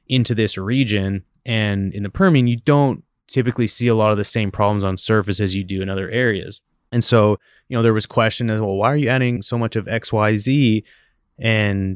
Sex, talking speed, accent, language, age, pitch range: male, 215 wpm, American, English, 20-39, 100-115 Hz